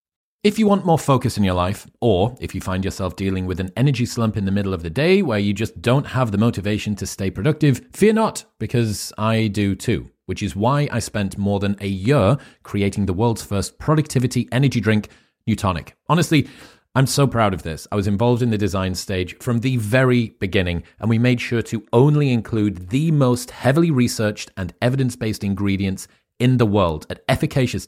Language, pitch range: English, 95-130 Hz